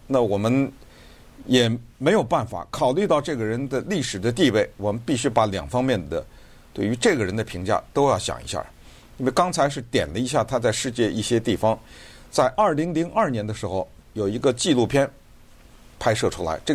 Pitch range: 105-140 Hz